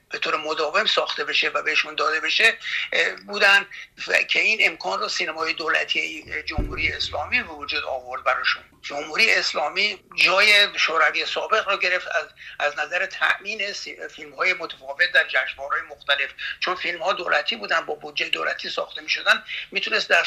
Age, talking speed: 60-79, 155 wpm